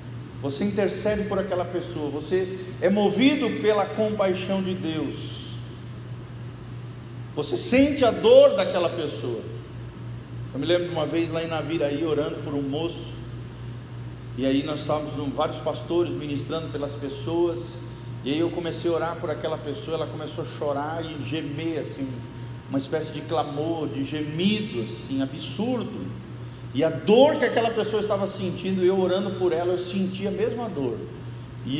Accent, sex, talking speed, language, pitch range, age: Brazilian, male, 155 wpm, Portuguese, 125-185 Hz, 40-59